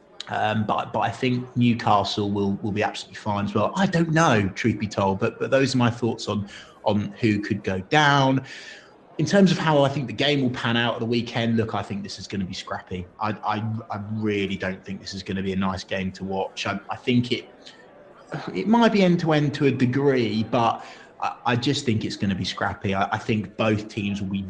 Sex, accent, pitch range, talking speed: male, British, 100-120 Hz, 235 wpm